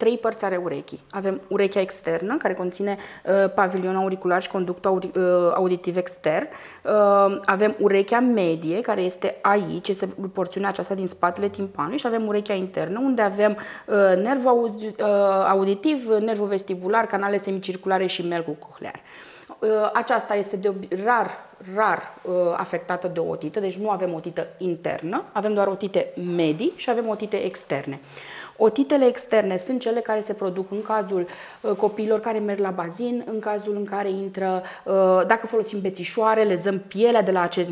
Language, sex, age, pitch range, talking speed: Romanian, female, 20-39, 180-220 Hz, 160 wpm